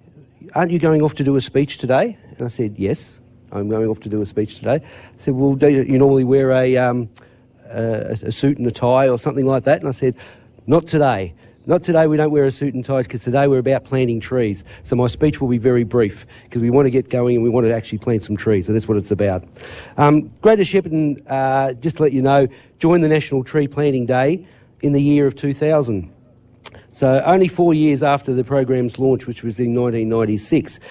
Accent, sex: Australian, male